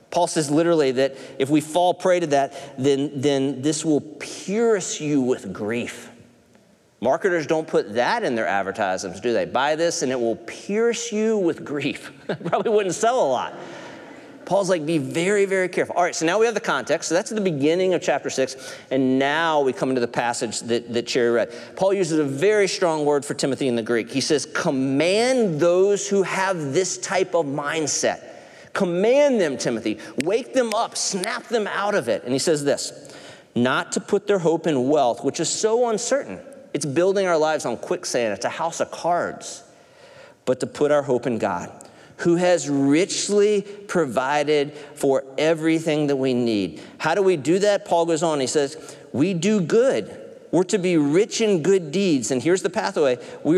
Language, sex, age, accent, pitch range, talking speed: English, male, 40-59, American, 140-200 Hz, 195 wpm